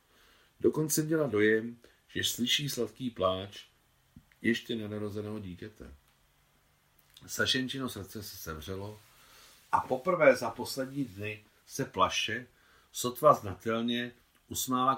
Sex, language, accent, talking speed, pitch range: male, Czech, native, 100 wpm, 95-125 Hz